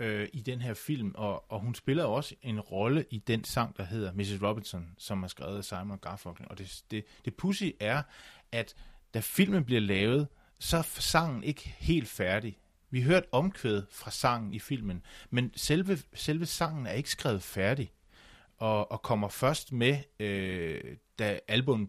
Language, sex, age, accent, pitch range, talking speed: Danish, male, 30-49, native, 100-130 Hz, 175 wpm